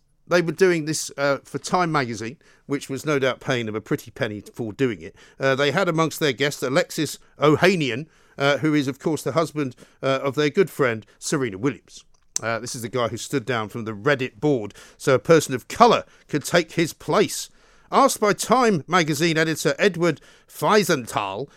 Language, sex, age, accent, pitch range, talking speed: English, male, 50-69, British, 140-190 Hz, 195 wpm